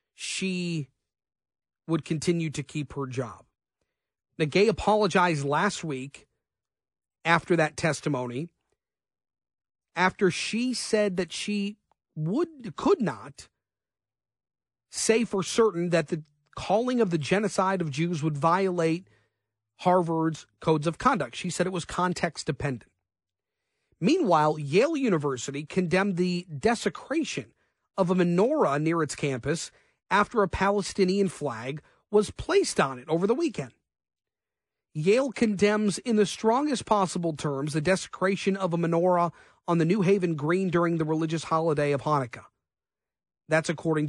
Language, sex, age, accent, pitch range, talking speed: English, male, 40-59, American, 150-195 Hz, 125 wpm